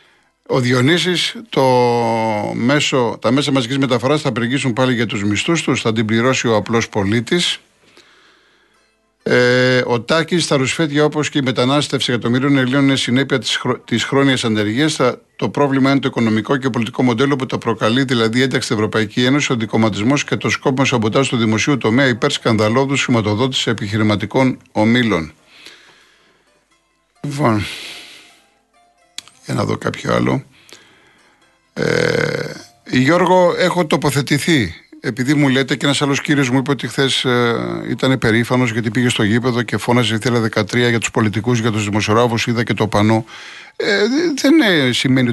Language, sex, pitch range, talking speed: Greek, male, 115-140 Hz, 140 wpm